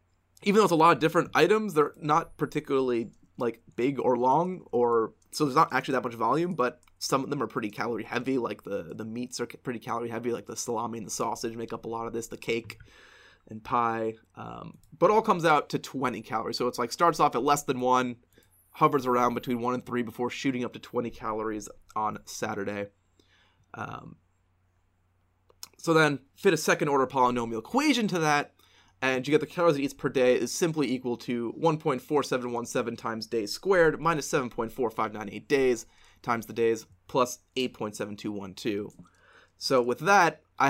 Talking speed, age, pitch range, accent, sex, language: 180 wpm, 20-39, 110-145 Hz, American, male, English